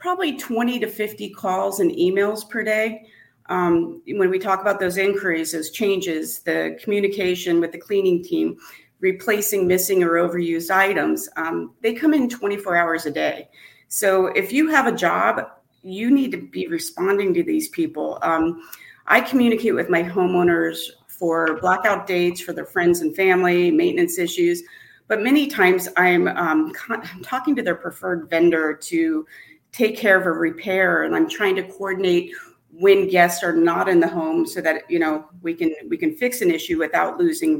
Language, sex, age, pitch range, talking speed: English, female, 40-59, 175-235 Hz, 170 wpm